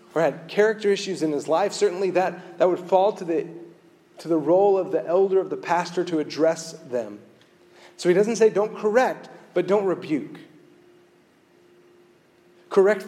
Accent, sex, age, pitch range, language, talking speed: American, male, 40-59, 150-195 Hz, English, 165 wpm